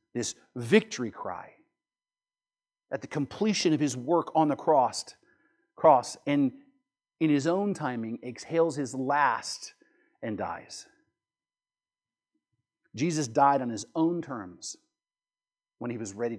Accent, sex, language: American, male, English